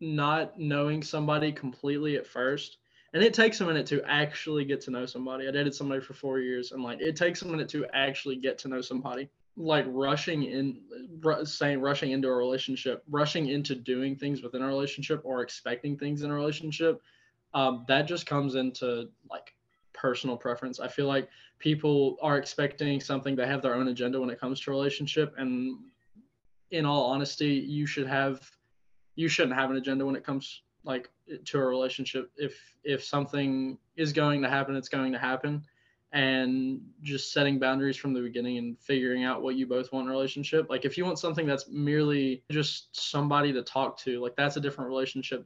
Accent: American